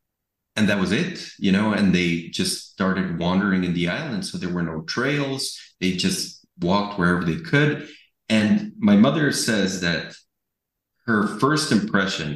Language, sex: English, male